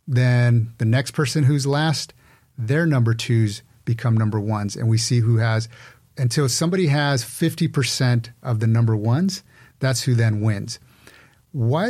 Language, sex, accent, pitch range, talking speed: English, male, American, 115-140 Hz, 155 wpm